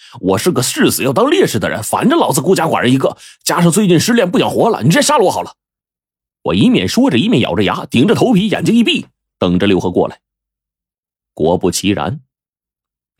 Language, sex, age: Chinese, male, 30-49